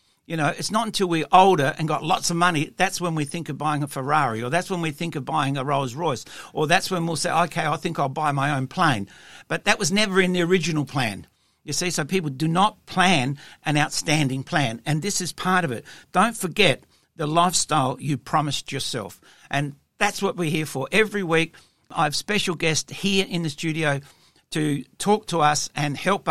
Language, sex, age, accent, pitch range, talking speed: English, male, 60-79, Australian, 150-185 Hz, 220 wpm